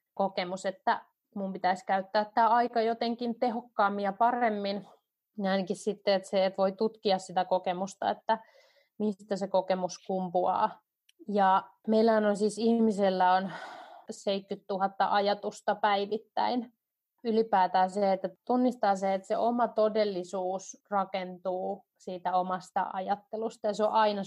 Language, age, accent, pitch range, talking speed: Finnish, 30-49, native, 190-220 Hz, 125 wpm